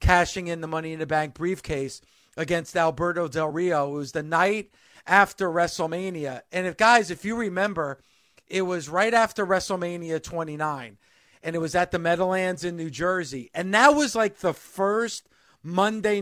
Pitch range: 165-205 Hz